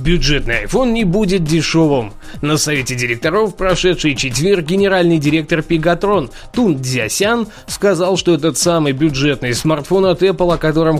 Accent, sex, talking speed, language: native, male, 135 wpm, Russian